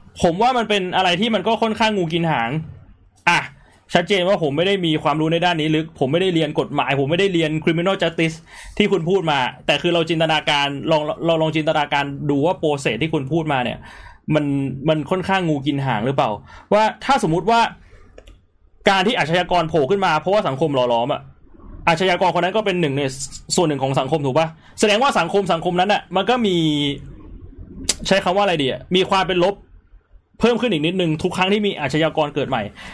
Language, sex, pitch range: Thai, male, 150-190 Hz